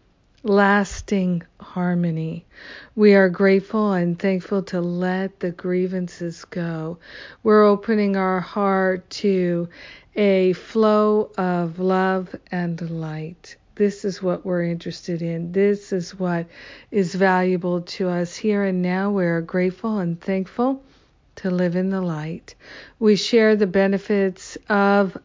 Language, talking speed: English, 125 wpm